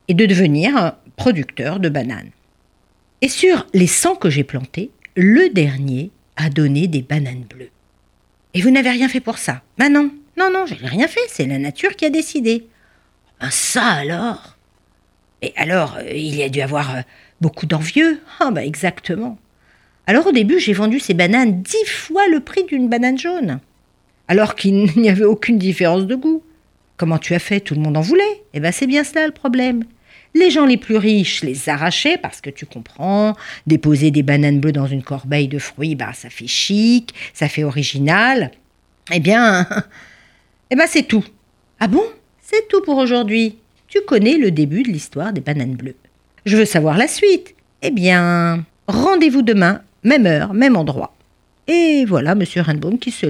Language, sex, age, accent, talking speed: French, female, 50-69, French, 185 wpm